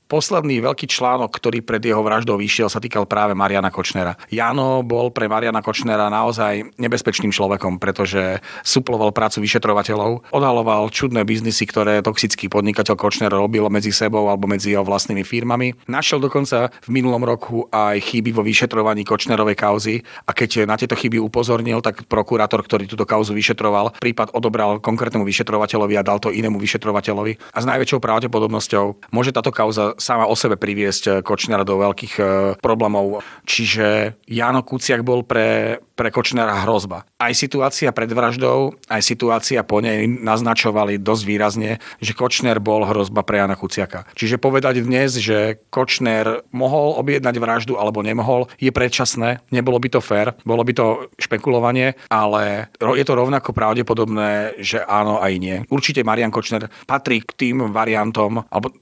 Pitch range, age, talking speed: 105-120 Hz, 40-59, 155 wpm